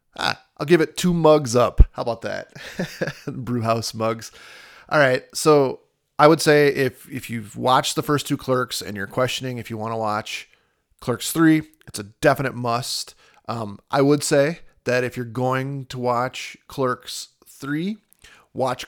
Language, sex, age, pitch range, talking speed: English, male, 30-49, 120-145 Hz, 170 wpm